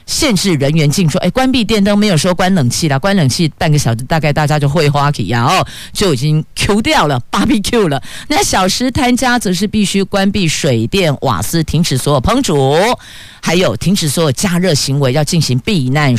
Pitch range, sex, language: 145-210 Hz, female, Chinese